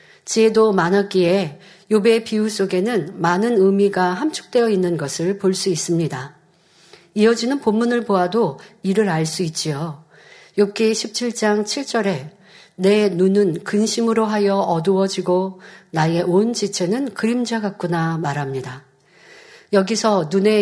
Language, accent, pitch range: Korean, native, 175-220 Hz